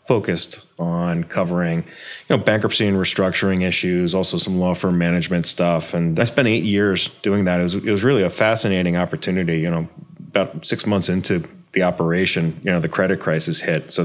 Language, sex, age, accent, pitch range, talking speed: English, male, 30-49, American, 85-100 Hz, 190 wpm